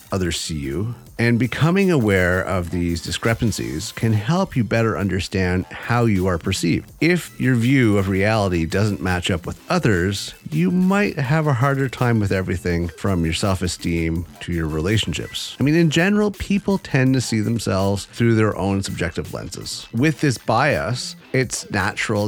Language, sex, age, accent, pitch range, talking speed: English, male, 30-49, American, 95-130 Hz, 165 wpm